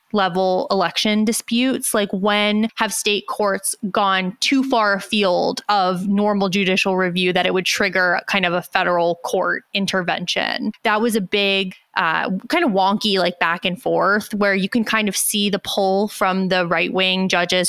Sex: female